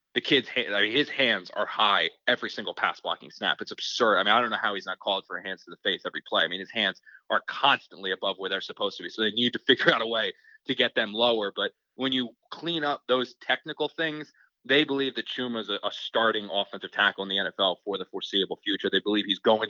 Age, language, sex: 20-39, English, male